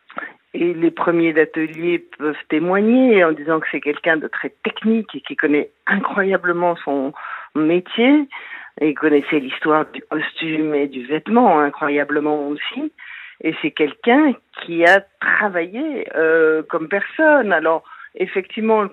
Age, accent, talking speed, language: 50-69, French, 135 wpm, French